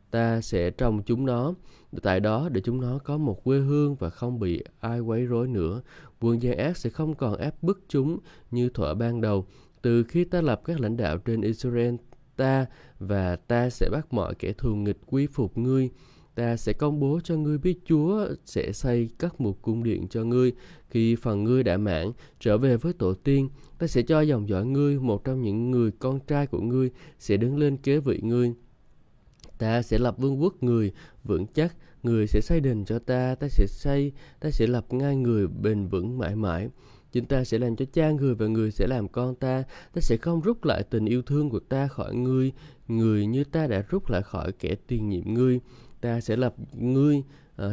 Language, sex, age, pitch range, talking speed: Vietnamese, male, 20-39, 110-135 Hz, 210 wpm